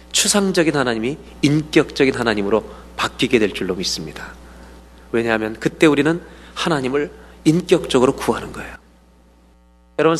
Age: 40-59